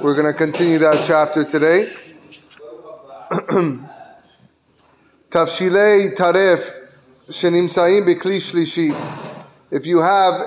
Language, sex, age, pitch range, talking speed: English, male, 20-39, 165-205 Hz, 55 wpm